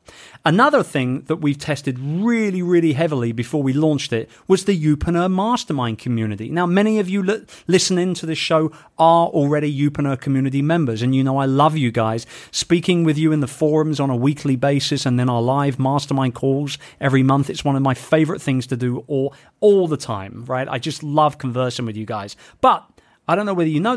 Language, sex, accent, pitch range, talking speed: English, male, British, 125-165 Hz, 205 wpm